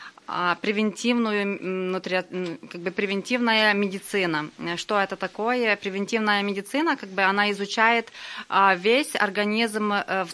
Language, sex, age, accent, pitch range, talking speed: Russian, female, 20-39, native, 180-215 Hz, 100 wpm